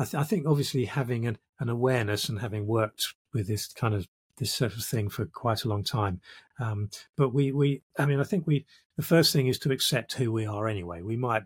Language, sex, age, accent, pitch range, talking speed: English, male, 40-59, British, 100-135 Hz, 240 wpm